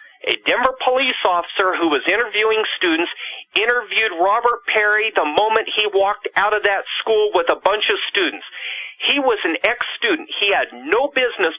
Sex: male